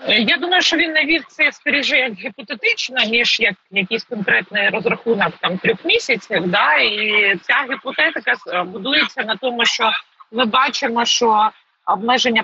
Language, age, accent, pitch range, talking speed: Ukrainian, 40-59, native, 210-265 Hz, 140 wpm